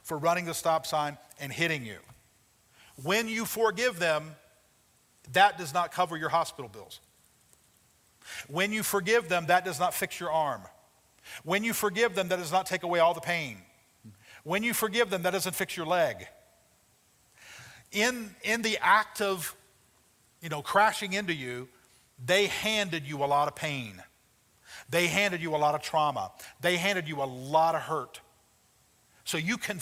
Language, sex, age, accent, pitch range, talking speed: English, male, 50-69, American, 145-190 Hz, 170 wpm